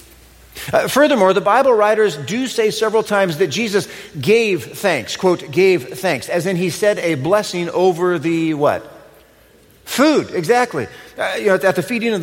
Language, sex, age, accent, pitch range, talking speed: English, male, 40-59, American, 165-220 Hz, 165 wpm